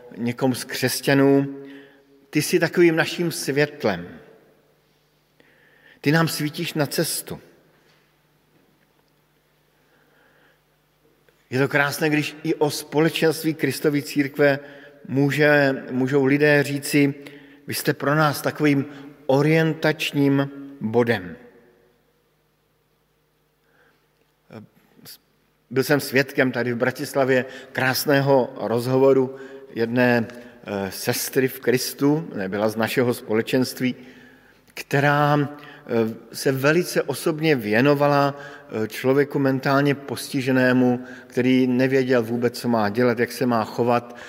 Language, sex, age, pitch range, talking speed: Slovak, male, 50-69, 125-145 Hz, 90 wpm